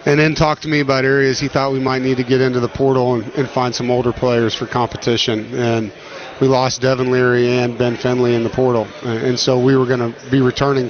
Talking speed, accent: 240 wpm, American